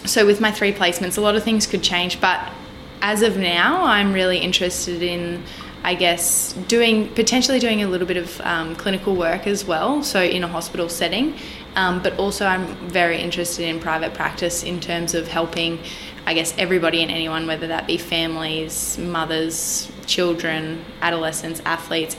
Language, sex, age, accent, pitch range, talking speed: English, female, 10-29, Australian, 165-190 Hz, 175 wpm